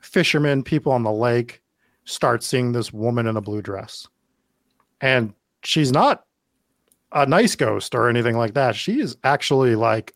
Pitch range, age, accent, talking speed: 120-160 Hz, 30-49, American, 160 wpm